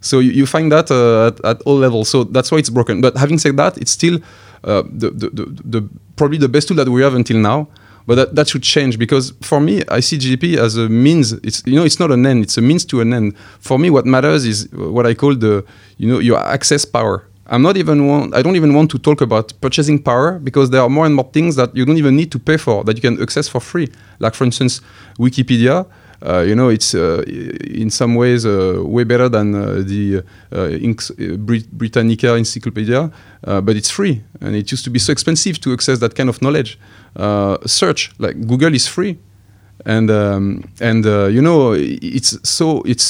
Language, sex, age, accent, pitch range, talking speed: English, male, 30-49, French, 110-145 Hz, 235 wpm